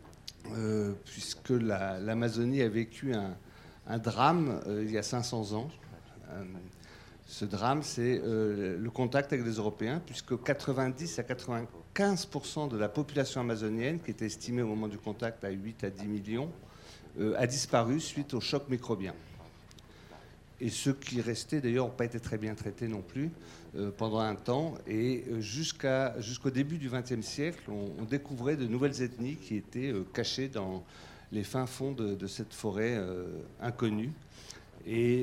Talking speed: 160 wpm